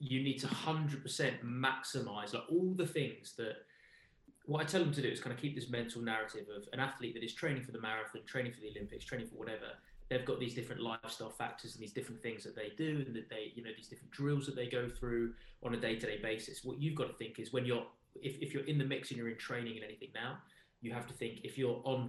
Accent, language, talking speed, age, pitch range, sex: British, English, 260 wpm, 20-39, 115-135 Hz, male